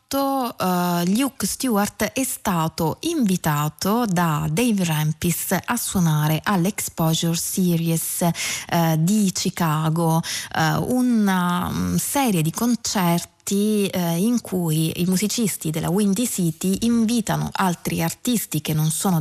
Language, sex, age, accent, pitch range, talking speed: Italian, female, 20-39, native, 165-205 Hz, 100 wpm